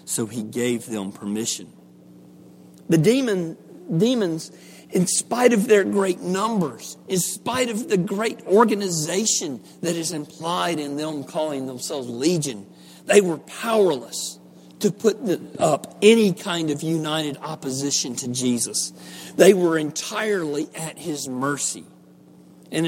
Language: English